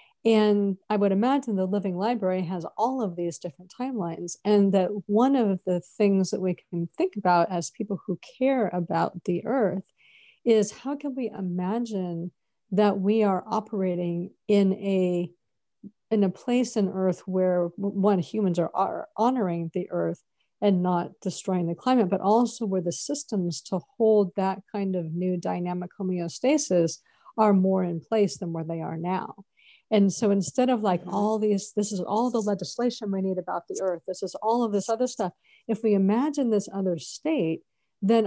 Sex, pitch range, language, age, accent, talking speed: female, 180-220 Hz, English, 50-69, American, 175 wpm